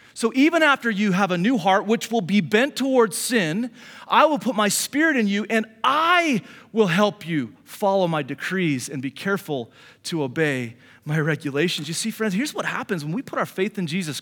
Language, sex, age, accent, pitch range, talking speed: English, male, 30-49, American, 185-255 Hz, 205 wpm